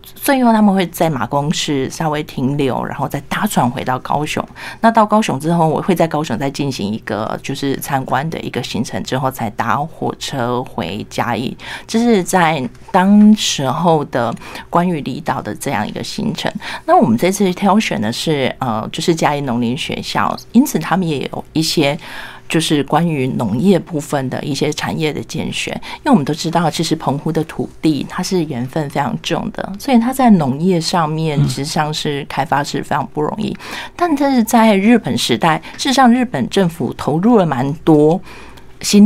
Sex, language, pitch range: female, Chinese, 140-200 Hz